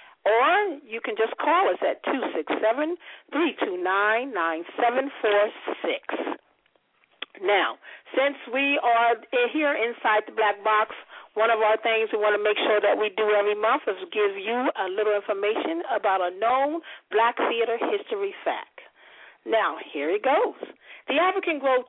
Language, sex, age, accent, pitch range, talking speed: English, female, 50-69, American, 220-365 Hz, 140 wpm